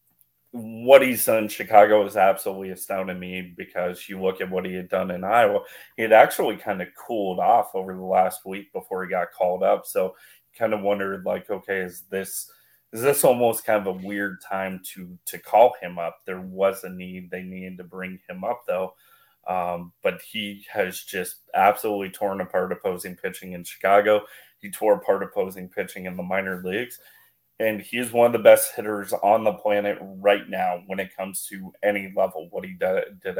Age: 30-49